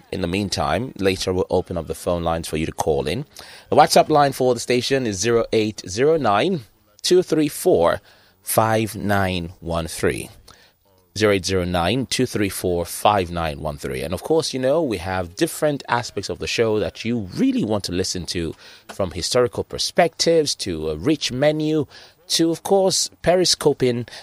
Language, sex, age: English, male, 30-49